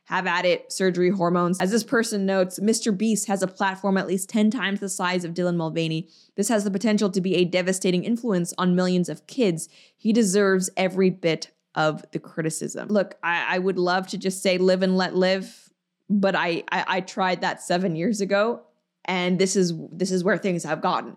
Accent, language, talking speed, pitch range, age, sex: American, English, 205 wpm, 185-225 Hz, 20-39, female